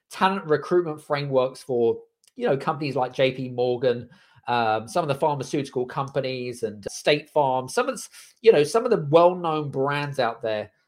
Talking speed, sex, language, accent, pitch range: 165 wpm, male, English, British, 130-175 Hz